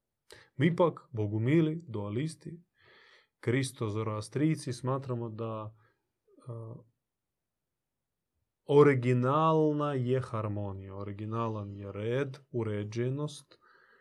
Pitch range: 115-135 Hz